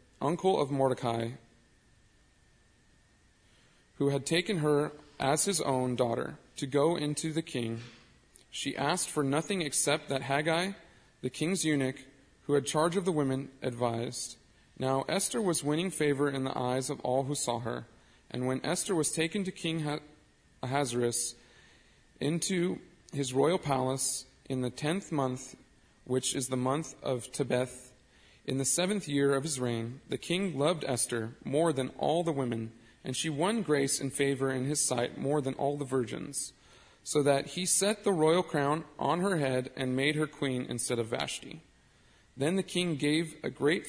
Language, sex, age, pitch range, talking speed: English, male, 40-59, 130-160 Hz, 165 wpm